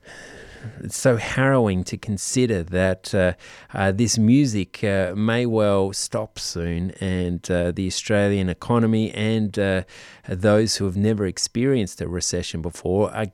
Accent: Australian